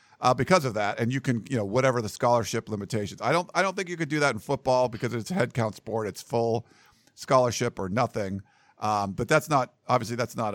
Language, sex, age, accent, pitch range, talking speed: English, male, 50-69, American, 115-145 Hz, 235 wpm